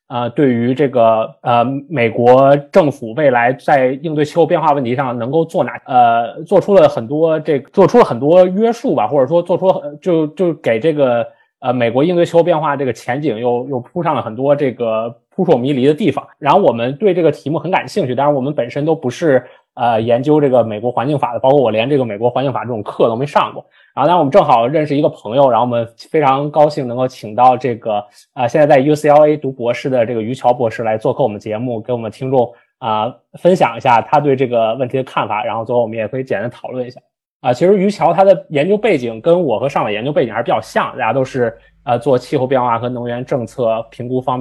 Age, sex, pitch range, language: 20-39, male, 115-150 Hz, Chinese